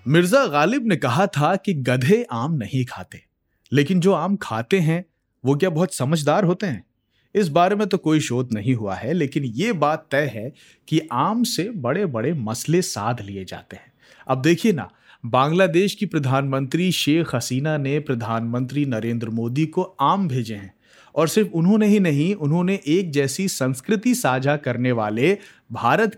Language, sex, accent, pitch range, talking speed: Hindi, male, native, 125-180 Hz, 170 wpm